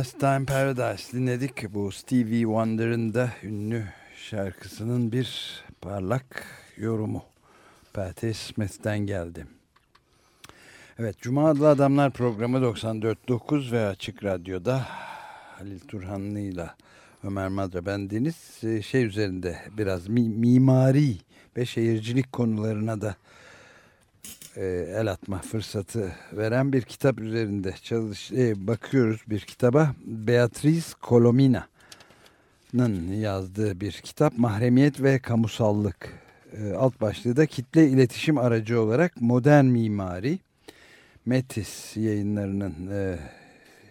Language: Turkish